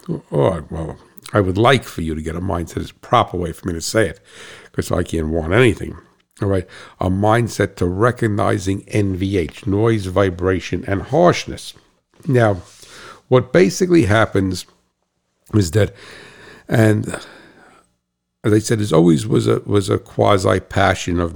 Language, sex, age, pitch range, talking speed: English, male, 60-79, 90-105 Hz, 150 wpm